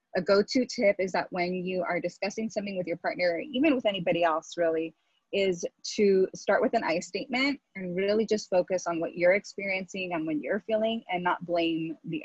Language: English